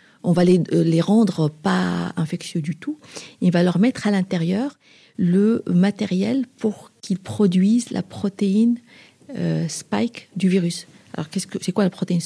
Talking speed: 160 wpm